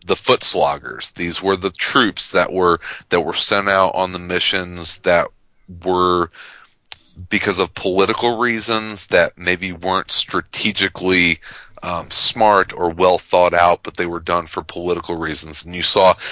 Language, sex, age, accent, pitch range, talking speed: English, male, 40-59, American, 85-95 Hz, 150 wpm